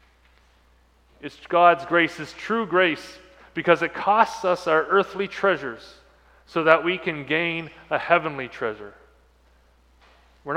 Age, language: 40-59, English